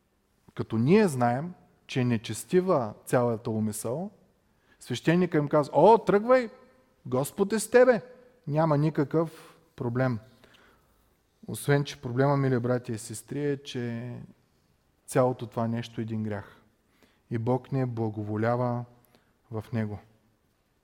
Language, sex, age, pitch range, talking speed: Bulgarian, male, 30-49, 120-150 Hz, 115 wpm